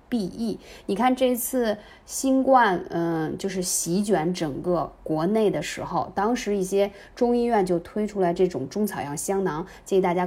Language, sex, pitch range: Chinese, female, 175-245 Hz